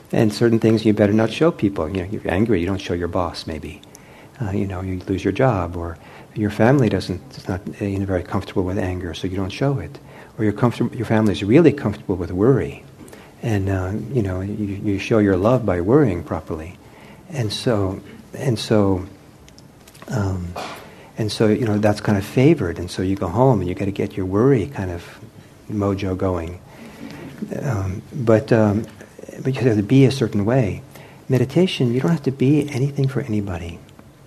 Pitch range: 100-130 Hz